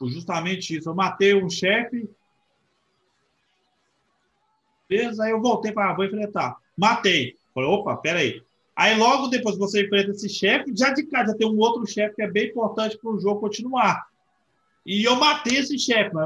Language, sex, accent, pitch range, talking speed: Portuguese, male, Brazilian, 175-225 Hz, 170 wpm